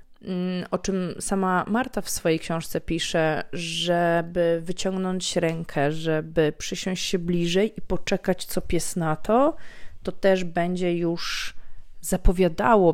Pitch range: 175-205 Hz